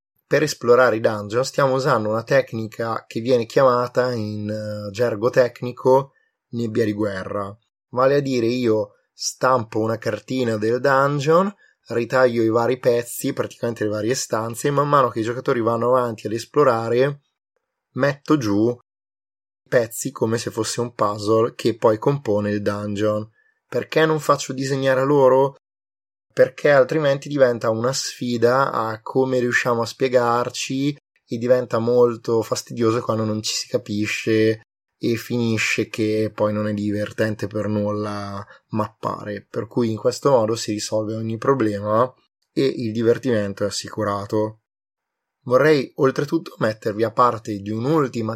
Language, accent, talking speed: Italian, native, 140 wpm